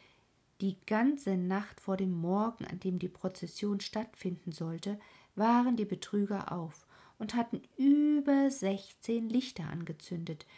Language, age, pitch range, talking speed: German, 50-69, 175-220 Hz, 125 wpm